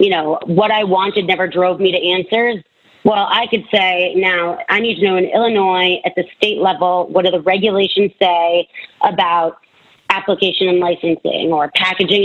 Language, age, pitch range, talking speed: English, 30-49, 180-220 Hz, 175 wpm